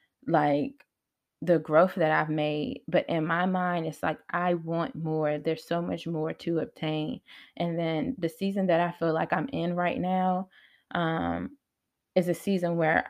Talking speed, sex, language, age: 175 wpm, female, English, 20-39